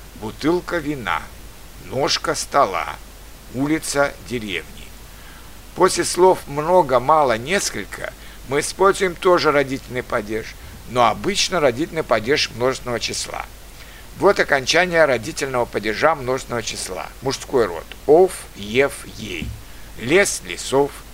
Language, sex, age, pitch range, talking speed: Russian, male, 60-79, 110-165 Hz, 100 wpm